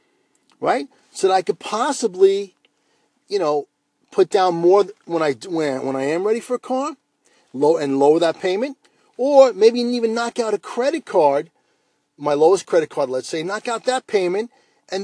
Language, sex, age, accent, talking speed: English, male, 50-69, American, 175 wpm